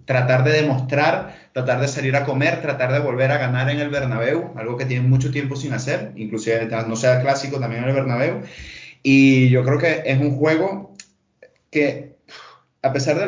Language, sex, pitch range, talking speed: Spanish, male, 125-145 Hz, 190 wpm